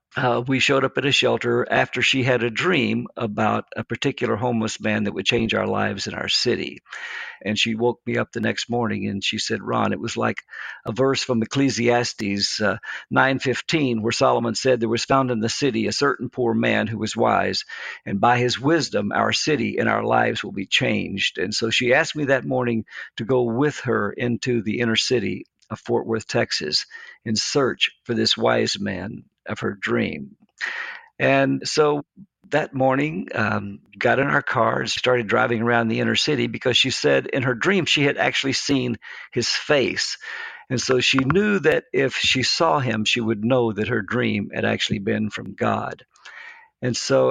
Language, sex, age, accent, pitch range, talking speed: English, male, 50-69, American, 115-135 Hz, 195 wpm